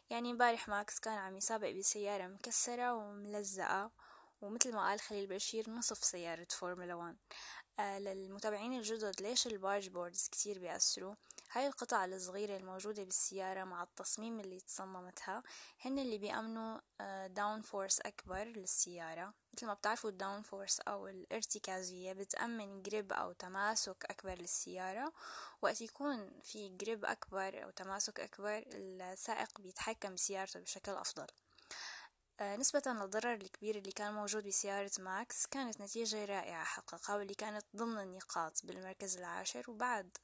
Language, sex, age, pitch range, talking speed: Arabic, female, 10-29, 190-220 Hz, 130 wpm